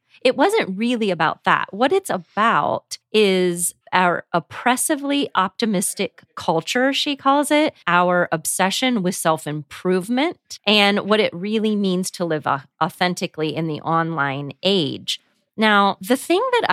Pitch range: 170-225 Hz